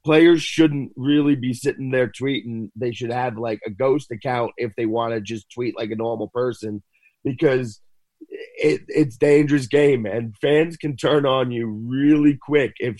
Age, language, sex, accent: 30-49, English, male, American